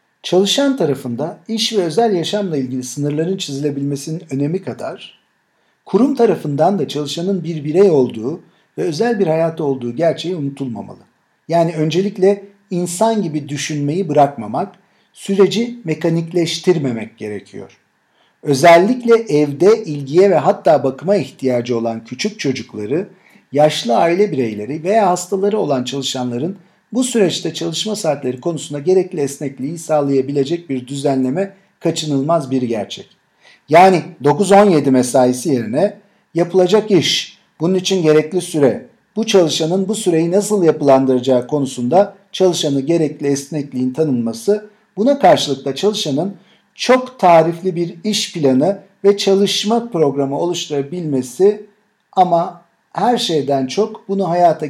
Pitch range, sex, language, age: 140-195 Hz, male, Turkish, 50-69